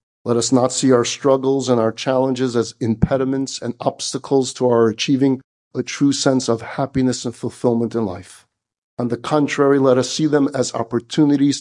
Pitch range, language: 130-155 Hz, English